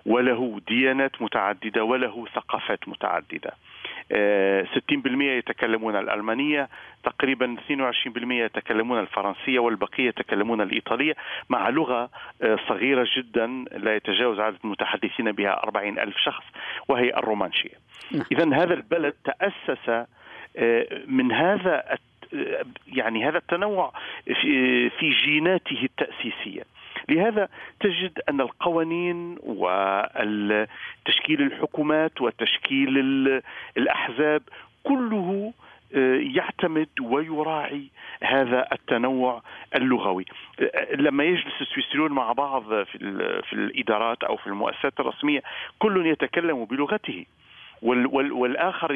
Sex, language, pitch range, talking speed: male, Arabic, 125-180 Hz, 85 wpm